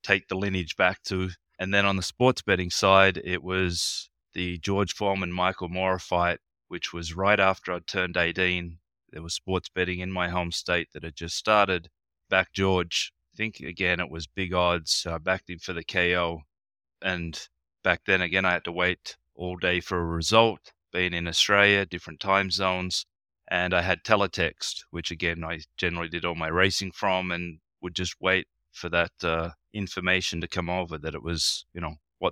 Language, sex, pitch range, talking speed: English, male, 85-95 Hz, 195 wpm